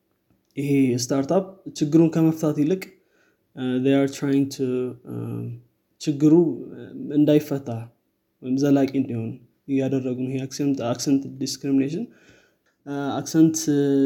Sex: male